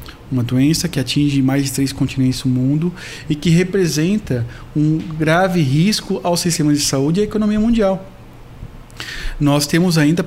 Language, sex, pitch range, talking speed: Portuguese, male, 135-180 Hz, 160 wpm